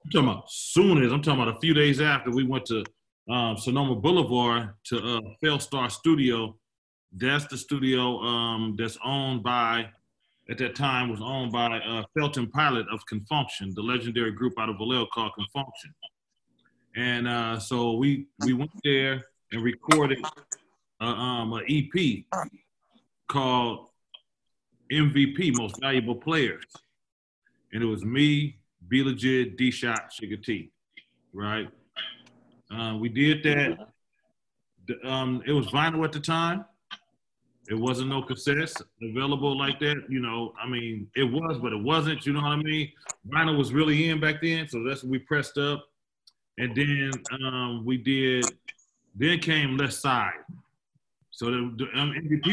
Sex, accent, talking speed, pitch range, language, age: male, American, 155 wpm, 115-145 Hz, English, 30-49